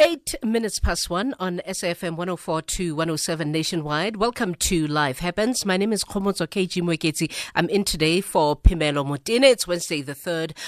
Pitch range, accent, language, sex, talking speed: 160-210 Hz, South African, English, female, 165 wpm